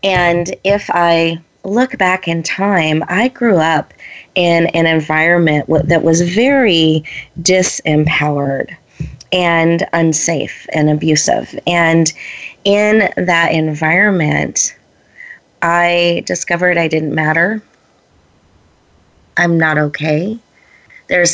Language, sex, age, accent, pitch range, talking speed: English, female, 30-49, American, 155-180 Hz, 95 wpm